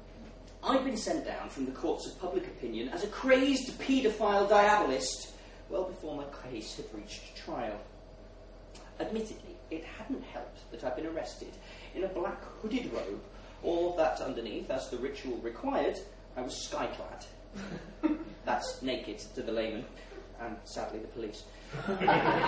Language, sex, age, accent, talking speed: English, male, 30-49, British, 145 wpm